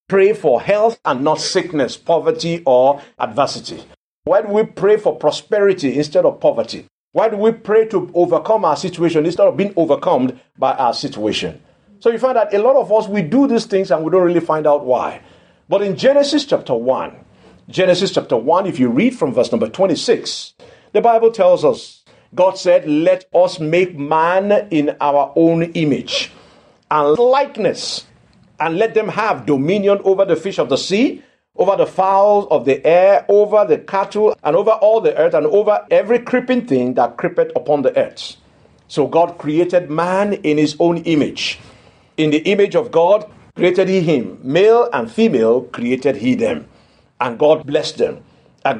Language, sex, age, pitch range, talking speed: English, male, 50-69, 160-225 Hz, 180 wpm